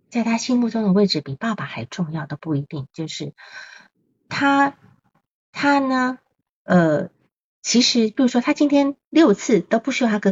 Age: 50-69